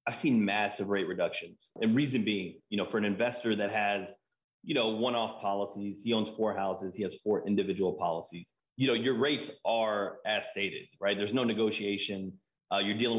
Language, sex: English, male